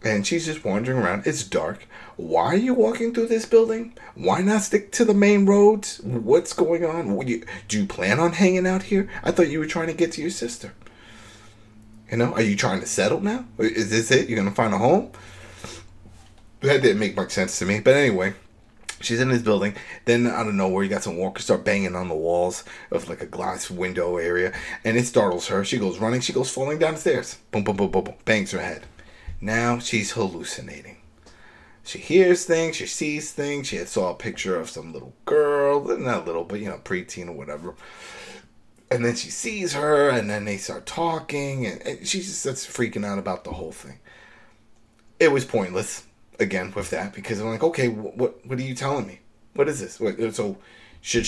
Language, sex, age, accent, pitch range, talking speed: English, male, 30-49, American, 105-160 Hz, 210 wpm